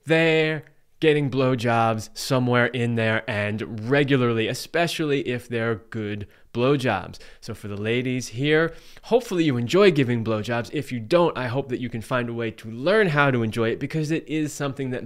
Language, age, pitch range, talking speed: English, 20-39, 115-145 Hz, 180 wpm